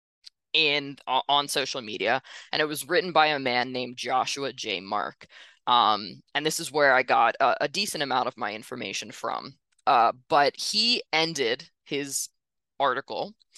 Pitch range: 135-175 Hz